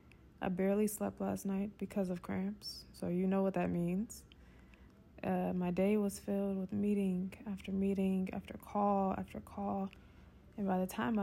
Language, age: English, 20-39